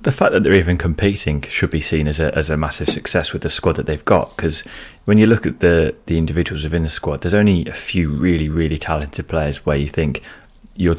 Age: 20-39